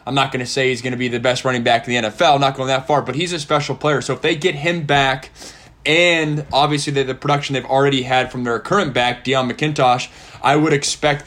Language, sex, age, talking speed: English, male, 20-39, 250 wpm